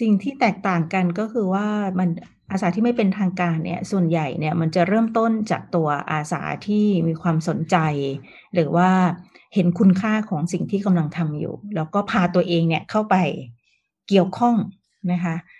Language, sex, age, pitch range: Thai, female, 30-49, 170-205 Hz